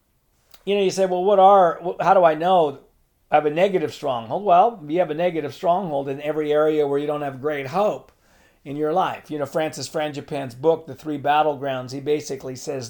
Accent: American